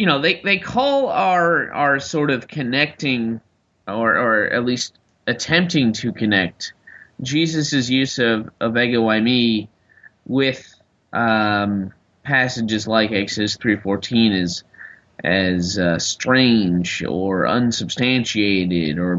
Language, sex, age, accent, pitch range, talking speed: English, male, 20-39, American, 105-135 Hz, 115 wpm